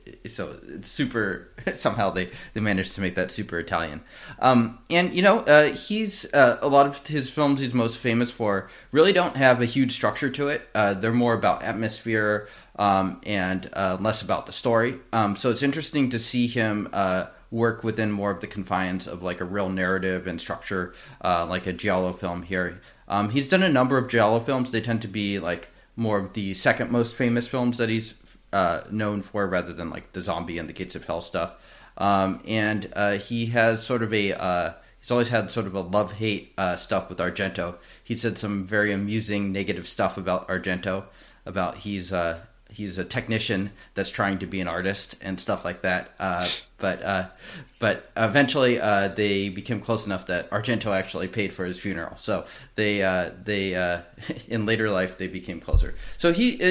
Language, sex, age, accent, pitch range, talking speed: English, male, 30-49, American, 95-120 Hz, 200 wpm